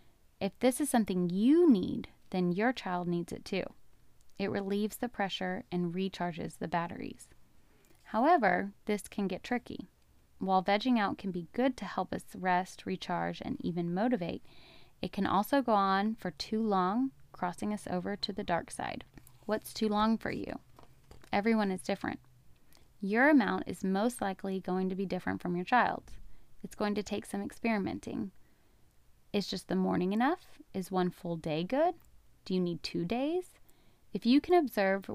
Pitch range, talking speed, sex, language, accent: 180-225 Hz, 170 wpm, female, English, American